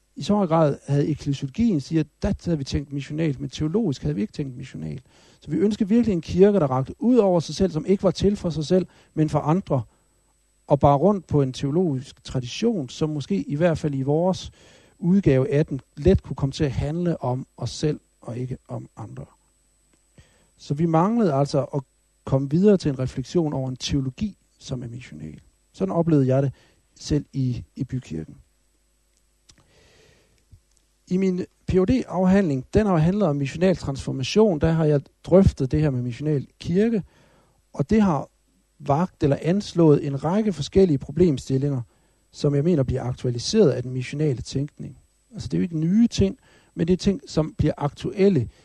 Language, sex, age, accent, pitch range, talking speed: Danish, male, 60-79, native, 130-175 Hz, 180 wpm